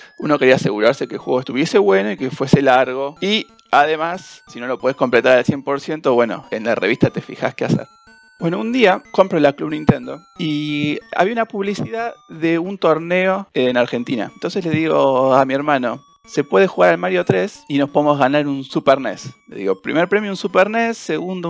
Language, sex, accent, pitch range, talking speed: Spanish, male, Argentinian, 150-200 Hz, 200 wpm